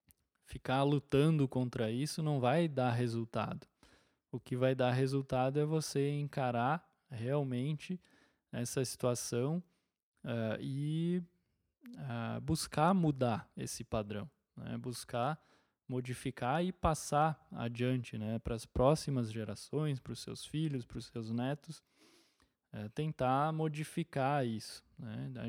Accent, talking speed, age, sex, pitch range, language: Brazilian, 110 wpm, 20-39, male, 120-150 Hz, Portuguese